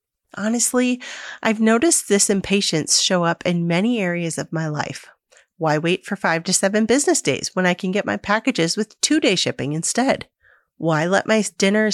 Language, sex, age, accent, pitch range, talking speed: English, female, 30-49, American, 180-250 Hz, 175 wpm